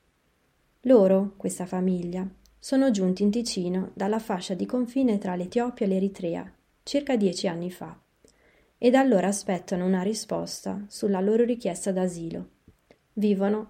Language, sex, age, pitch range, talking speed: Italian, female, 30-49, 185-220 Hz, 130 wpm